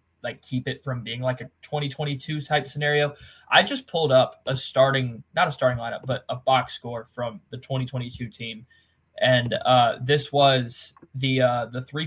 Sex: male